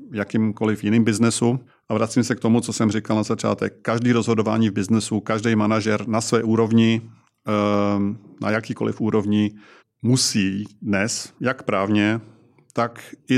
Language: Czech